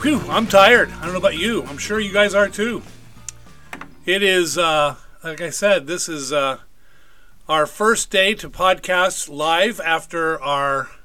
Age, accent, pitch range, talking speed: 40-59, American, 155-205 Hz, 165 wpm